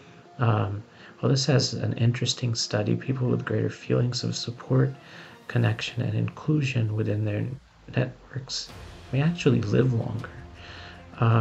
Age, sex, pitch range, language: 40-59, male, 90-125 Hz, English